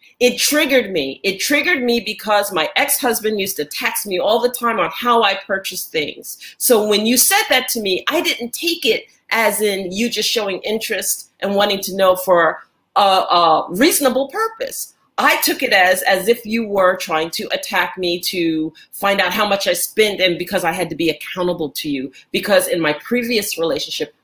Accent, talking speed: American, 200 wpm